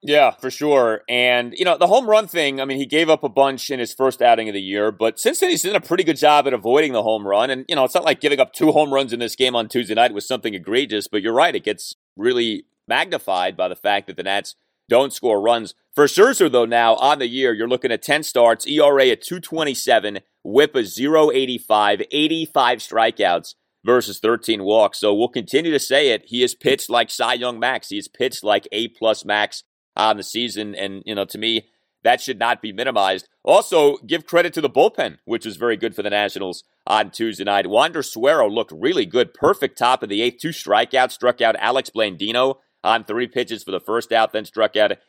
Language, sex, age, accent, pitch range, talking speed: English, male, 30-49, American, 110-150 Hz, 225 wpm